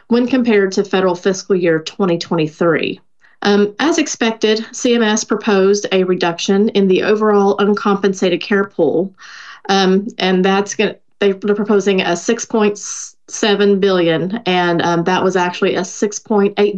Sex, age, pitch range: female, 30-49, 175-205 Hz